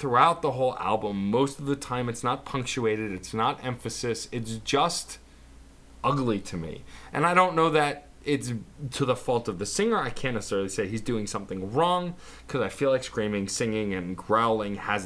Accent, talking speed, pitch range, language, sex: American, 190 wpm, 105-140 Hz, English, male